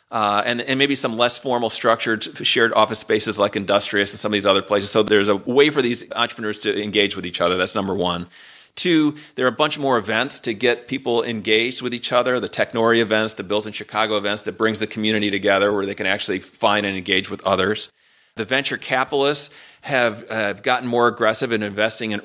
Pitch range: 105-120 Hz